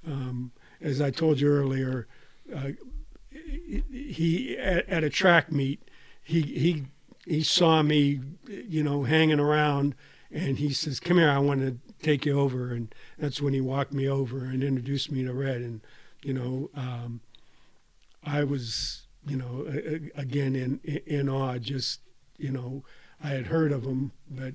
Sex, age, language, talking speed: male, 50-69, English, 165 wpm